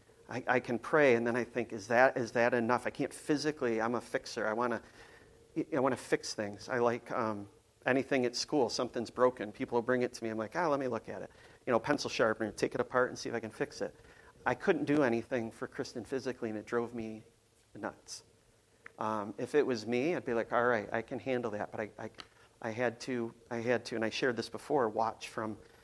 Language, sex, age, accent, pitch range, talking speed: English, male, 40-59, American, 110-125 Hz, 240 wpm